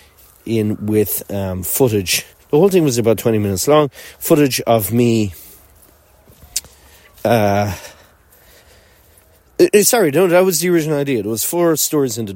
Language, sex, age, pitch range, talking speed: English, male, 30-49, 100-130 Hz, 140 wpm